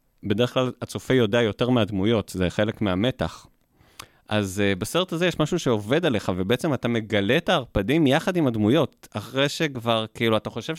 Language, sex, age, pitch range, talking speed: Hebrew, male, 30-49, 105-135 Hz, 165 wpm